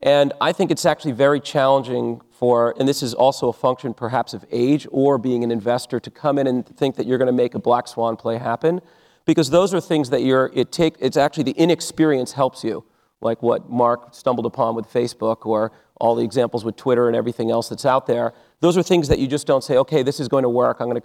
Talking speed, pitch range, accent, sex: 235 wpm, 120-145 Hz, American, male